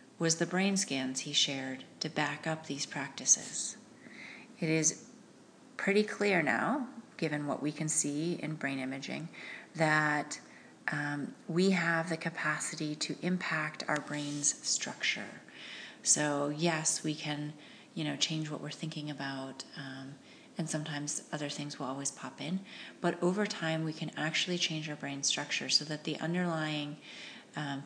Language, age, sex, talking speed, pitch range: English, 30-49, female, 150 wpm, 145-175 Hz